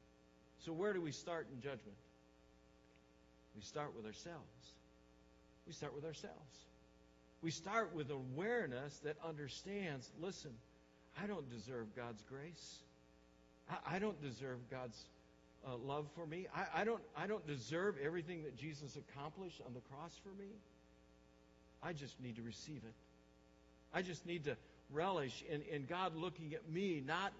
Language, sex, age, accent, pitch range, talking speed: English, male, 60-79, American, 110-185 Hz, 145 wpm